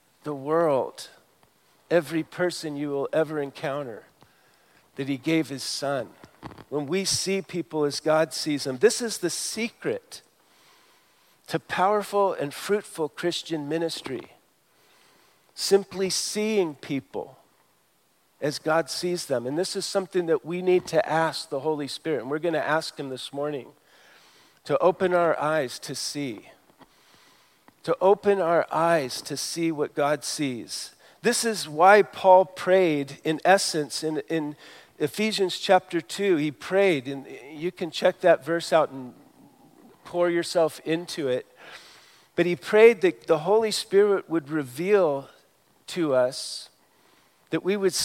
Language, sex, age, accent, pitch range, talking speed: English, male, 50-69, American, 150-190 Hz, 140 wpm